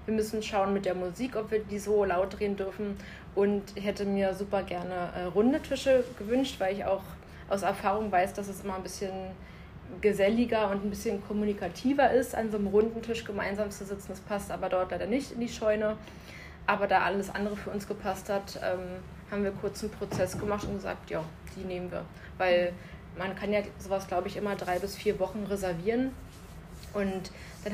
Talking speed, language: 195 wpm, German